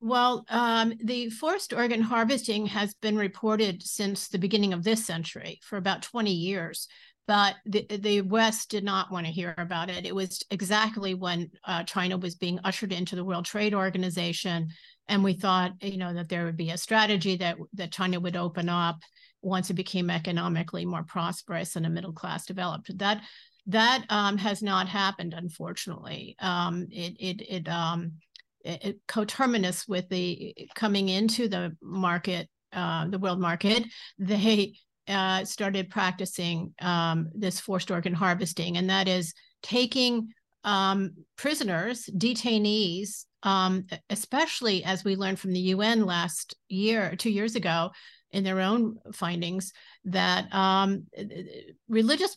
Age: 50-69